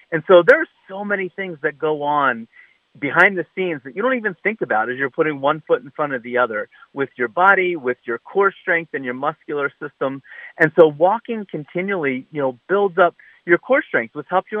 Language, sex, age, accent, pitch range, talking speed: English, male, 40-59, American, 140-190 Hz, 220 wpm